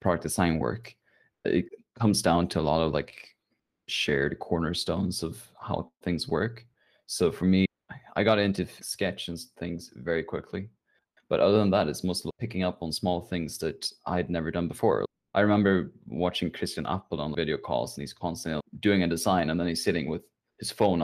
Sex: male